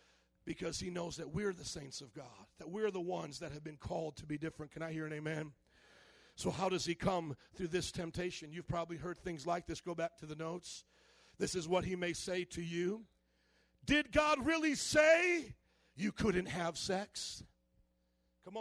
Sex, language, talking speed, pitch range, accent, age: male, English, 195 wpm, 175-265 Hz, American, 50-69